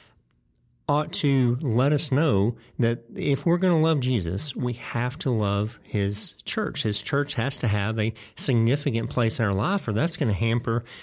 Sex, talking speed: male, 185 wpm